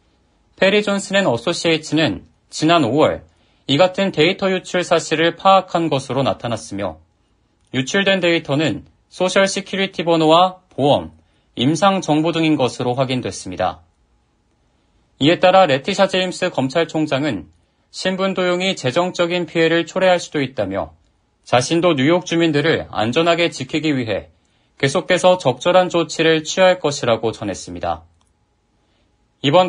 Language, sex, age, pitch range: Korean, male, 40-59, 115-180 Hz